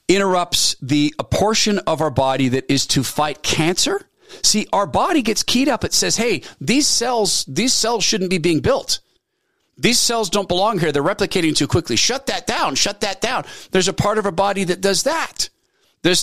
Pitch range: 135-200 Hz